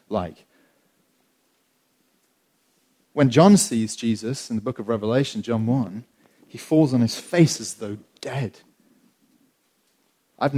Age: 30-49